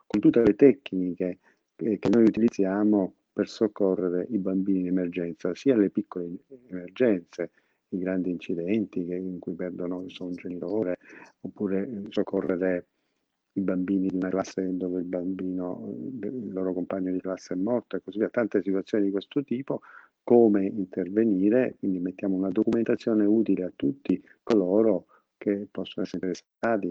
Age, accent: 50-69, native